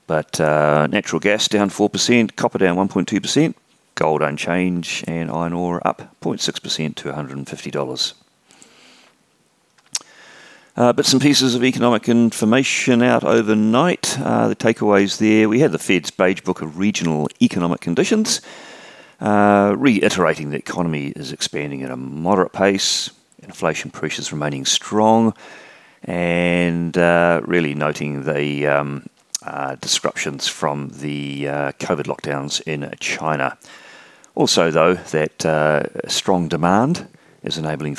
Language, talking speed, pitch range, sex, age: English, 125 wpm, 75-105 Hz, male, 40-59